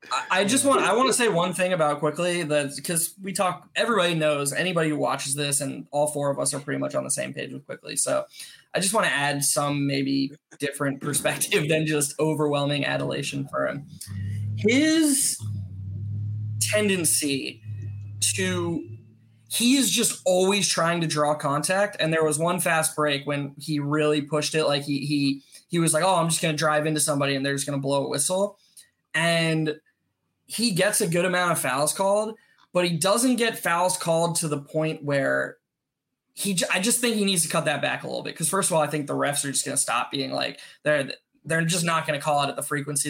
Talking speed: 215 wpm